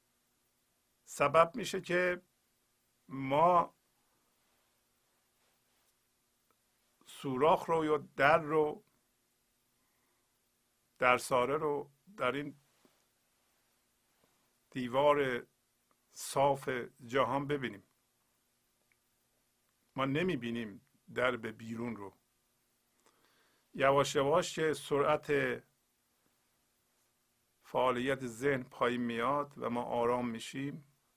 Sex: male